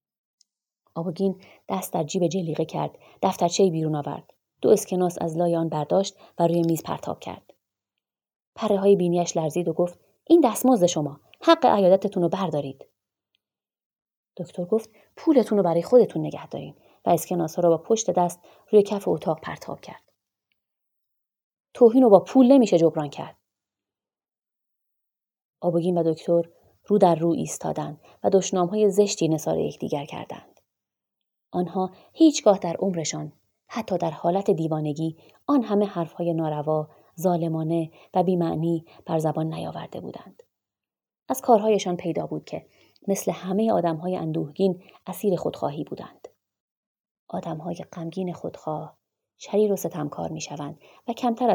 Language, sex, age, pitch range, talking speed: Persian, female, 30-49, 160-205 Hz, 130 wpm